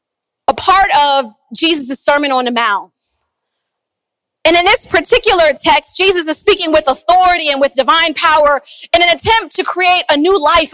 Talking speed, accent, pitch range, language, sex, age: 170 wpm, American, 315-405 Hz, English, female, 30-49